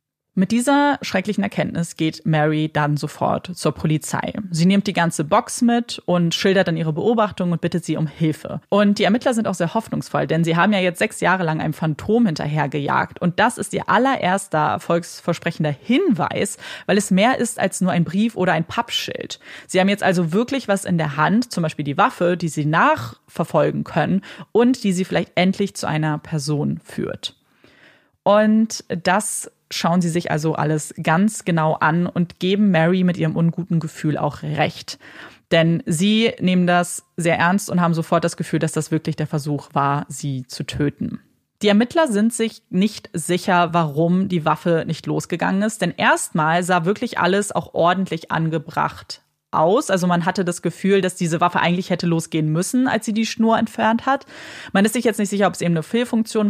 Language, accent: German, German